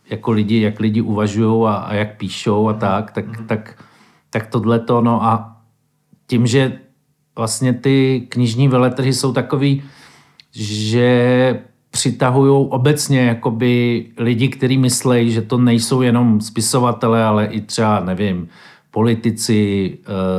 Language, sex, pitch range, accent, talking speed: Czech, male, 110-125 Hz, native, 125 wpm